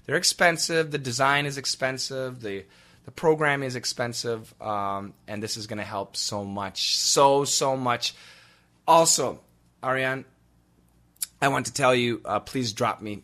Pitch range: 105-150 Hz